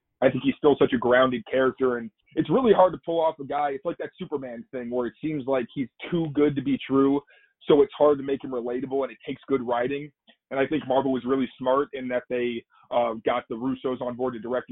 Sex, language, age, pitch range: male, English, 20-39, 125-145 Hz